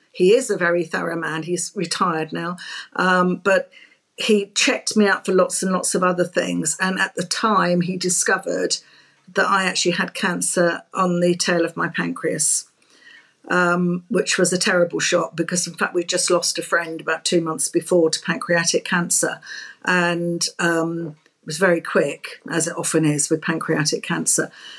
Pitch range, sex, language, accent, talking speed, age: 180-205 Hz, female, English, British, 175 wpm, 50-69